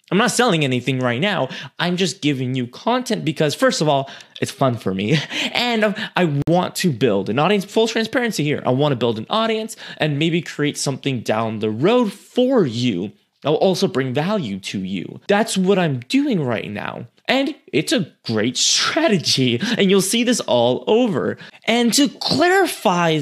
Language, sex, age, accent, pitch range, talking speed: English, male, 20-39, American, 135-220 Hz, 180 wpm